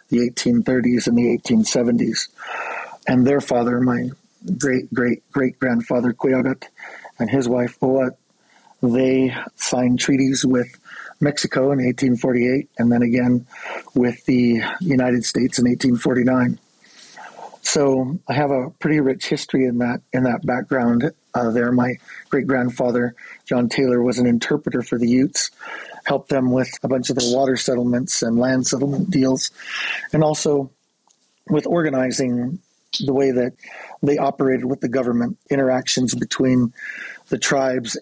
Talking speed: 130 wpm